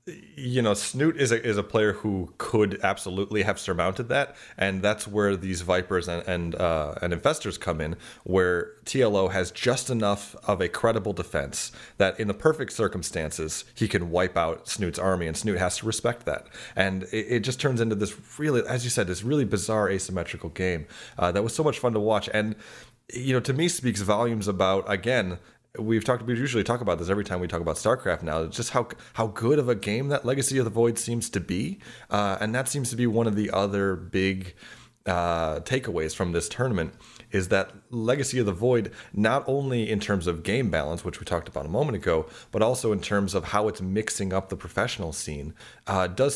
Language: English